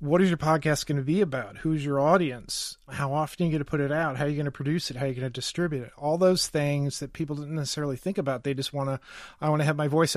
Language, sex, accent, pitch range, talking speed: English, male, American, 135-160 Hz, 315 wpm